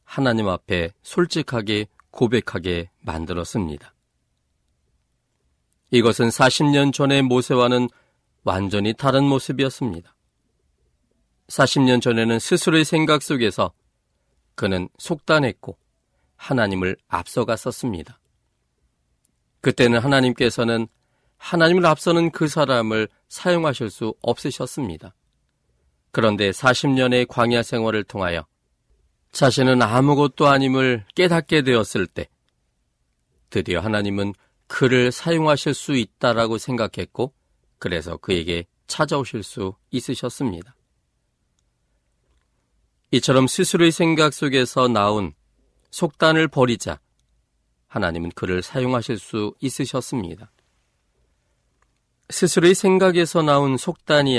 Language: Korean